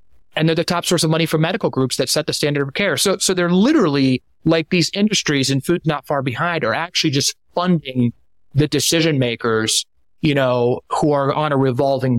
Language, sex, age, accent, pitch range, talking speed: English, male, 30-49, American, 115-155 Hz, 210 wpm